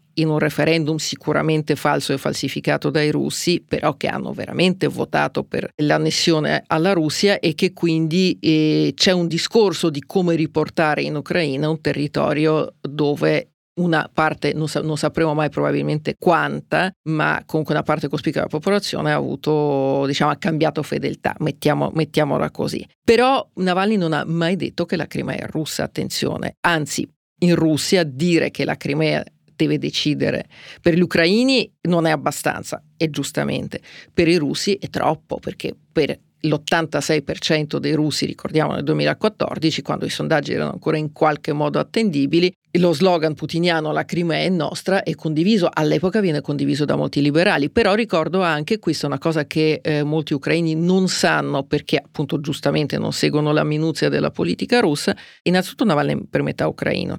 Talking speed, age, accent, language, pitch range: 160 wpm, 40-59, native, Italian, 150-175 Hz